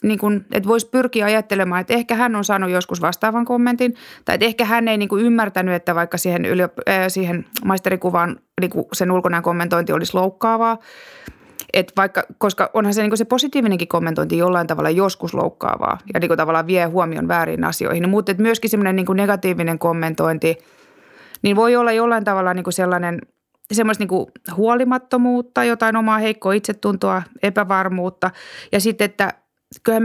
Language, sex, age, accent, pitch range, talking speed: Finnish, female, 30-49, native, 175-220 Hz, 150 wpm